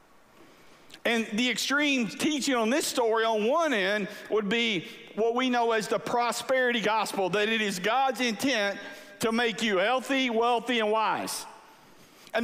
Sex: male